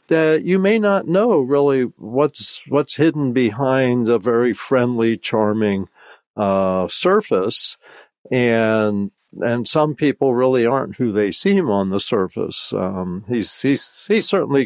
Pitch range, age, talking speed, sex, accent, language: 105-150 Hz, 50-69, 135 wpm, male, American, English